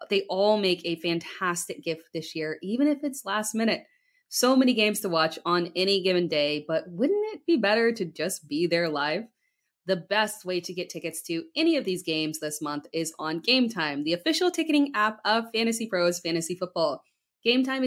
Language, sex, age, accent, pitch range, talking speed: English, female, 20-39, American, 170-230 Hz, 195 wpm